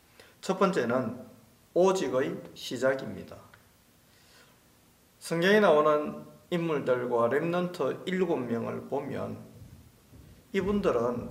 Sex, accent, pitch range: male, native, 145-195 Hz